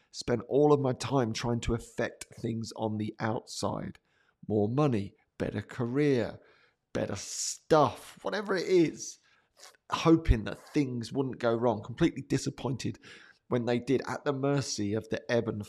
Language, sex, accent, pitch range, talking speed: English, male, British, 110-135 Hz, 150 wpm